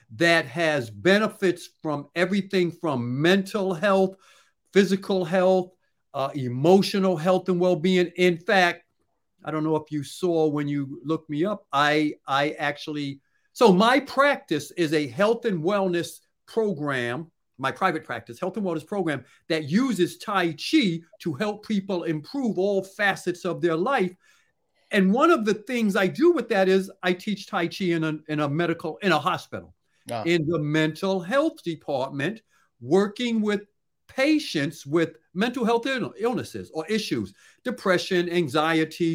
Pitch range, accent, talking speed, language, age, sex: 150-195 Hz, American, 150 wpm, English, 50-69, male